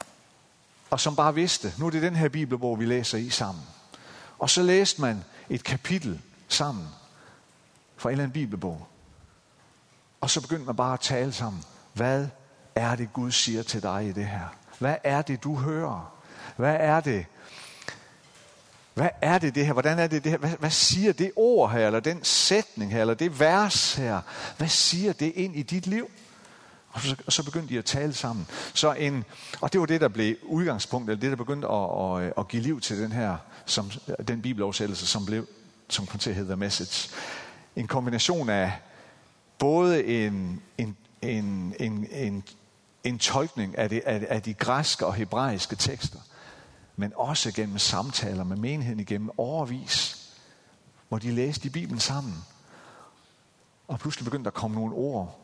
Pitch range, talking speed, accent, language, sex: 110-155 Hz, 175 wpm, native, Danish, male